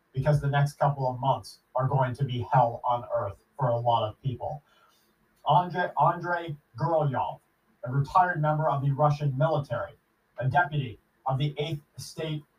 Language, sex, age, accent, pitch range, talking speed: English, male, 30-49, American, 130-150 Hz, 160 wpm